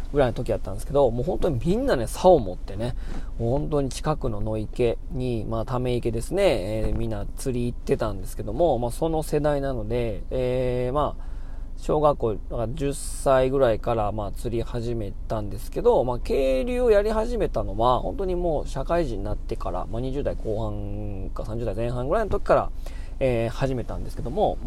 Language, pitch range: Japanese, 110-160 Hz